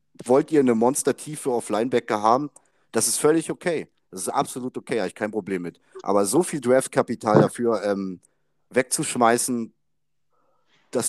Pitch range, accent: 105-135 Hz, German